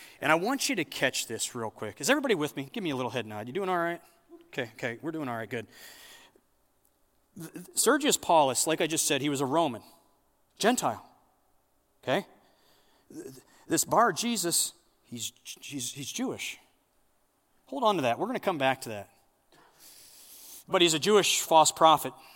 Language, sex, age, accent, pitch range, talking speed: English, male, 30-49, American, 150-245 Hz, 175 wpm